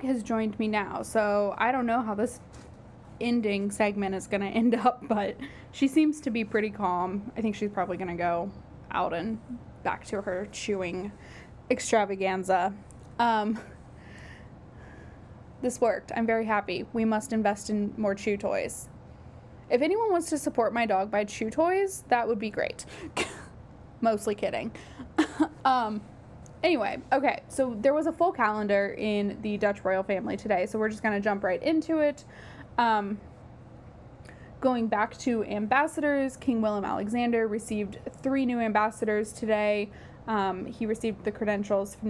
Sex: female